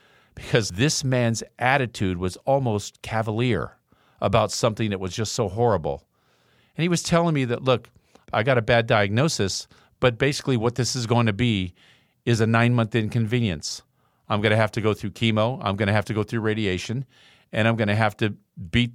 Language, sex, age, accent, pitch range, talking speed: English, male, 50-69, American, 95-120 Hz, 195 wpm